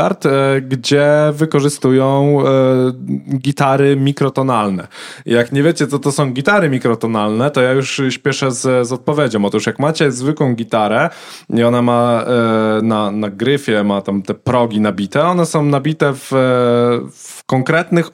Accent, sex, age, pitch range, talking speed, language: native, male, 20-39, 125-155 Hz, 135 wpm, Polish